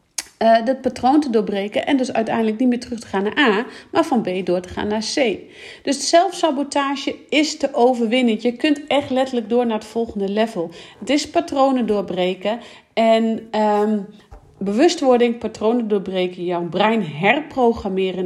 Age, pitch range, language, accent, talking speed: 40-59, 200-260 Hz, Dutch, Dutch, 160 wpm